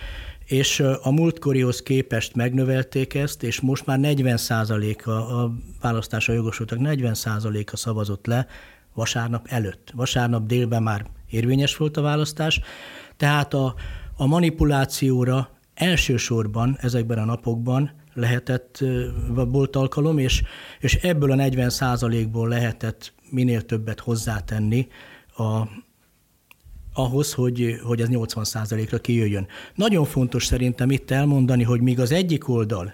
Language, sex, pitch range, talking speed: Hungarian, male, 115-135 Hz, 115 wpm